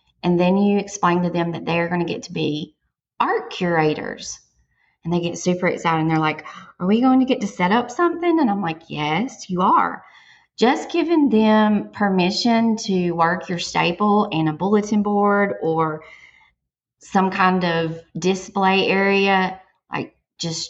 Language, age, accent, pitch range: English, 30-49, American, 165-205 Hz